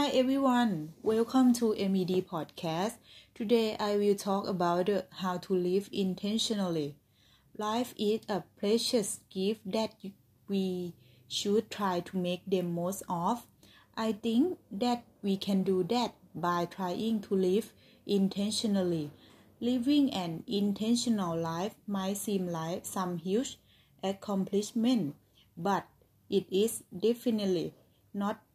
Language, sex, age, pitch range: Thai, female, 20-39, 180-220 Hz